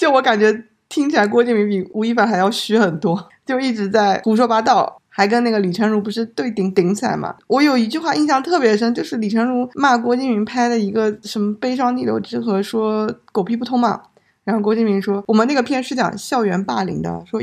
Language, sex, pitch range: Chinese, female, 195-235 Hz